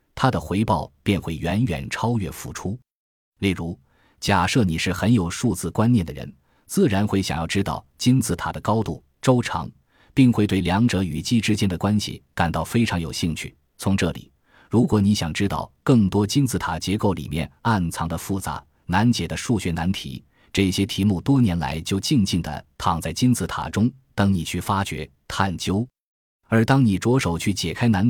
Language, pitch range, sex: Chinese, 85-115 Hz, male